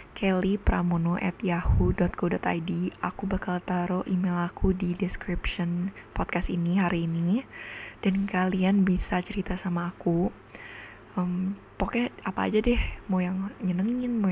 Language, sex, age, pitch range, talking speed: Indonesian, female, 20-39, 175-190 Hz, 120 wpm